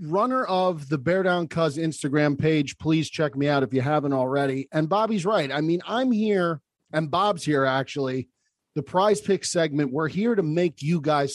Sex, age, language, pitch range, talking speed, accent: male, 40-59, English, 145-185 Hz, 195 wpm, American